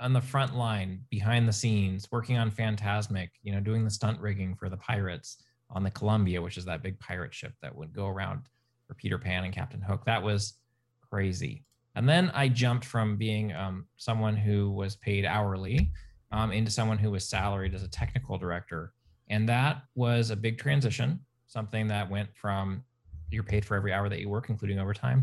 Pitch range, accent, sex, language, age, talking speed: 100-120 Hz, American, male, English, 20-39, 195 wpm